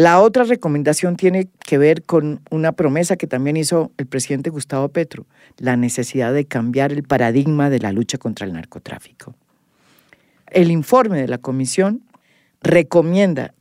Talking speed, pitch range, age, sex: 150 wpm, 130-175 Hz, 50-69, female